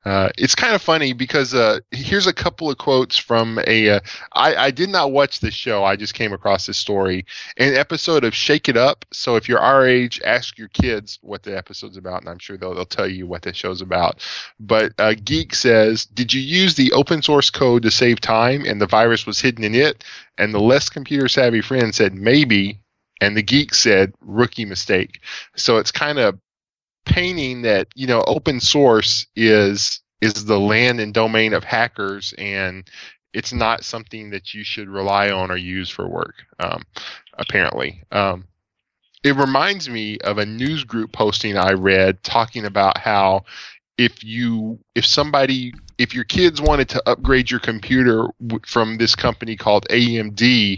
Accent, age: American, 10-29